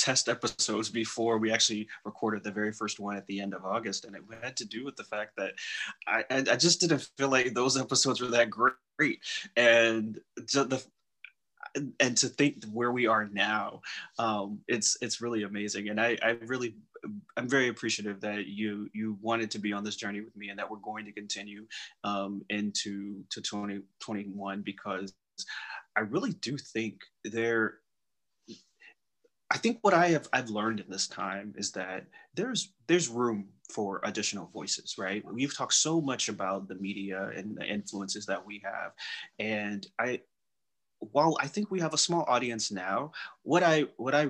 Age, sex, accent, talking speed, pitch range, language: 20-39, male, American, 180 wpm, 100-120 Hz, English